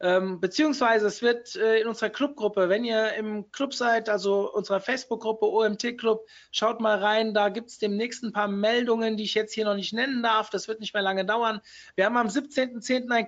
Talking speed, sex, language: 200 wpm, male, German